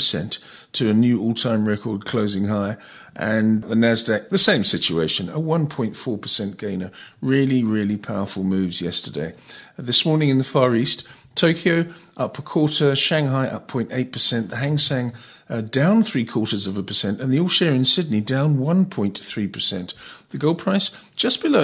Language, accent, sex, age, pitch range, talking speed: English, British, male, 50-69, 105-140 Hz, 165 wpm